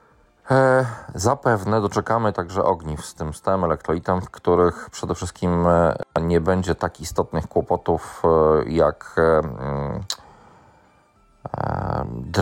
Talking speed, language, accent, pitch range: 110 wpm, Polish, native, 80-100 Hz